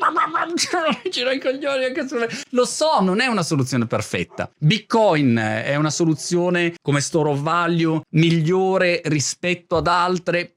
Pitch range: 130-185 Hz